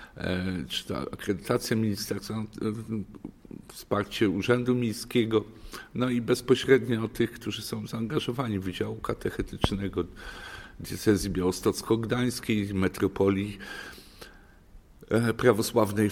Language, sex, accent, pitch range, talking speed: Polish, male, native, 100-115 Hz, 80 wpm